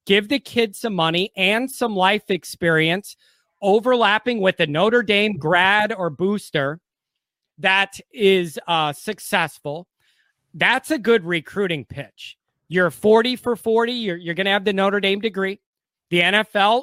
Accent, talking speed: American, 145 wpm